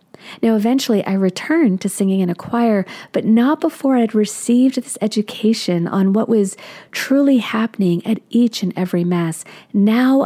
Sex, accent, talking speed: female, American, 160 wpm